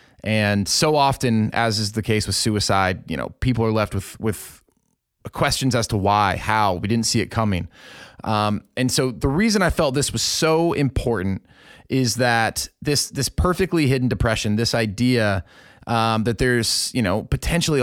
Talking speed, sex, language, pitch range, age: 175 wpm, male, English, 105-135 Hz, 30-49